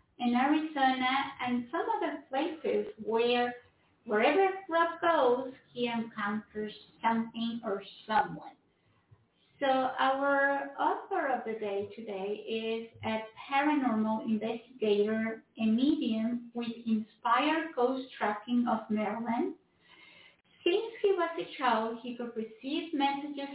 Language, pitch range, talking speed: English, 220-280 Hz, 110 wpm